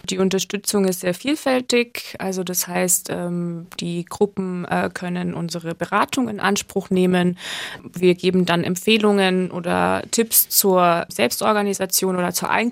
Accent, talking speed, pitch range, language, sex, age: German, 125 wpm, 180-225 Hz, German, female, 20-39